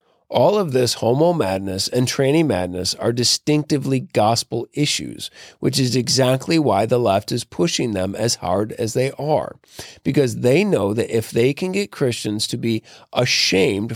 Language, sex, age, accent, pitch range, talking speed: English, male, 40-59, American, 115-150 Hz, 165 wpm